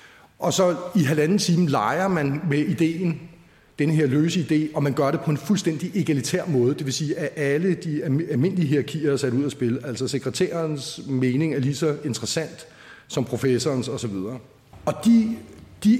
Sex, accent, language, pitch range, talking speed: male, native, Danish, 135-175 Hz, 180 wpm